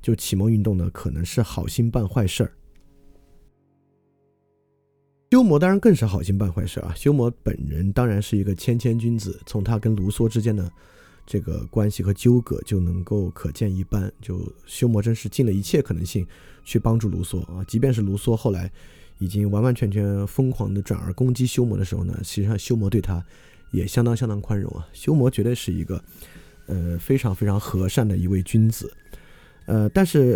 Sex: male